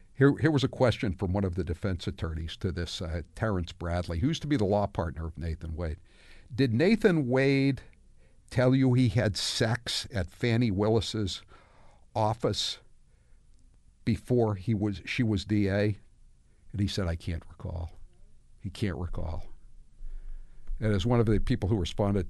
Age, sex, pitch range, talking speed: 60-79, male, 90-120 Hz, 165 wpm